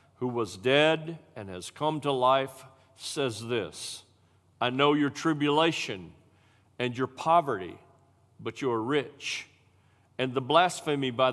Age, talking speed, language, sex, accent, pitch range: 50-69, 130 wpm, English, male, American, 115-150 Hz